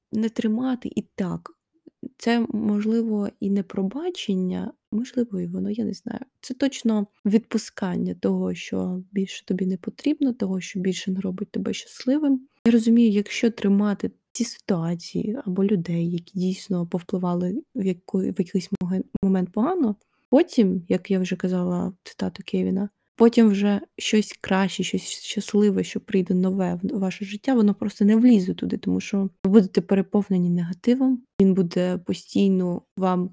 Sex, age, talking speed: female, 20-39, 145 wpm